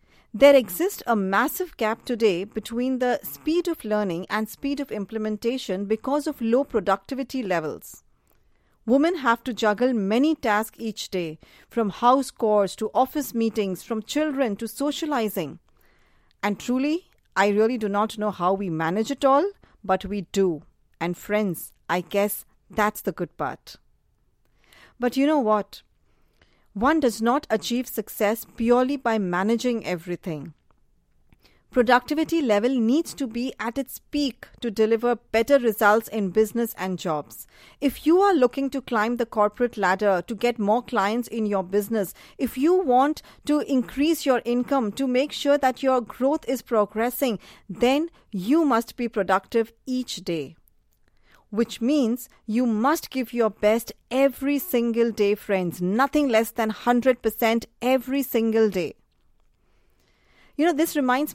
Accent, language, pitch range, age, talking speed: Indian, English, 205-260 Hz, 40-59, 145 wpm